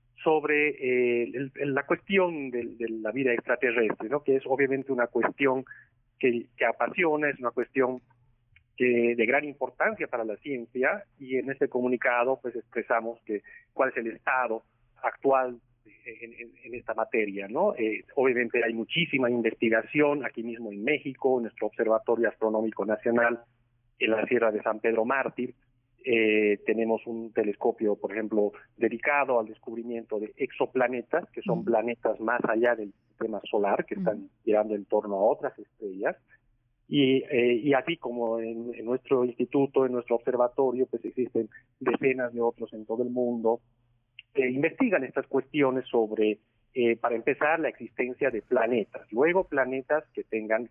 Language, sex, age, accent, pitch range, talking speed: Spanish, male, 40-59, Mexican, 115-130 Hz, 155 wpm